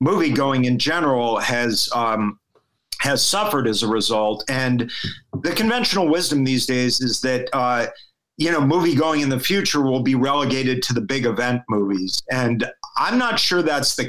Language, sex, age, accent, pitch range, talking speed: English, male, 50-69, American, 130-150 Hz, 175 wpm